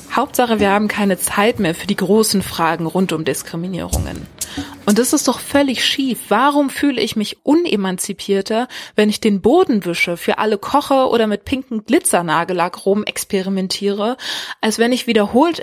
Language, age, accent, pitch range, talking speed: German, 20-39, German, 195-255 Hz, 160 wpm